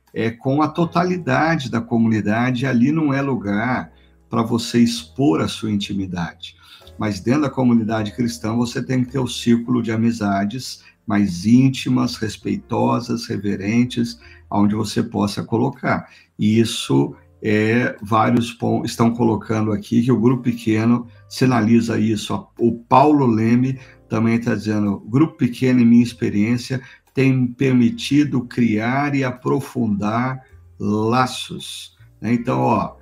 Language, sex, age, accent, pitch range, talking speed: Portuguese, male, 50-69, Brazilian, 105-125 Hz, 120 wpm